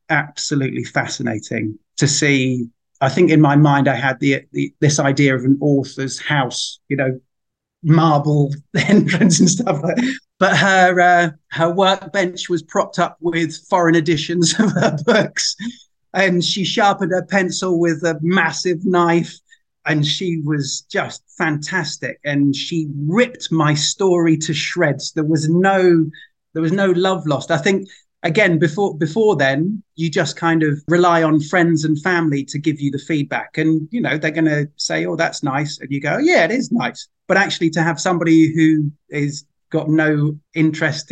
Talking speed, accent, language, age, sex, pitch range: 170 wpm, British, English, 30-49, male, 150-185 Hz